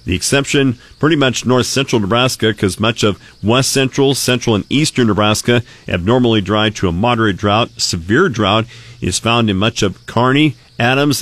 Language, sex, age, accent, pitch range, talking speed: English, male, 40-59, American, 100-120 Hz, 160 wpm